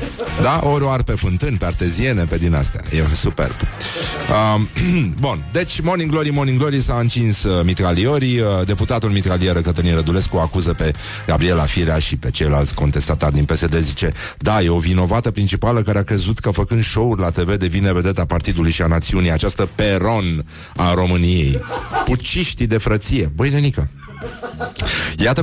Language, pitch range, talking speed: Romanian, 85-115 Hz, 155 wpm